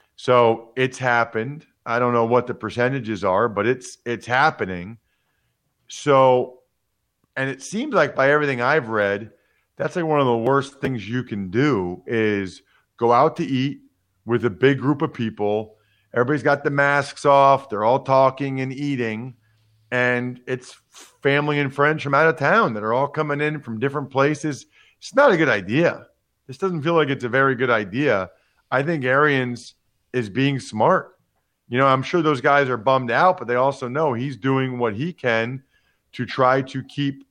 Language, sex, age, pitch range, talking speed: English, male, 40-59, 120-145 Hz, 180 wpm